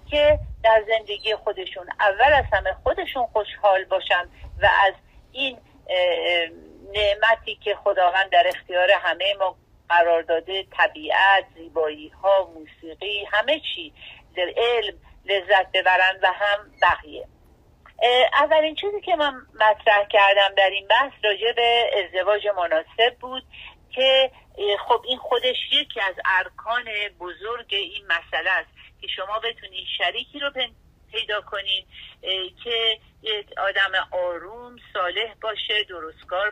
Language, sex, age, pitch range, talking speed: Persian, female, 50-69, 185-245 Hz, 120 wpm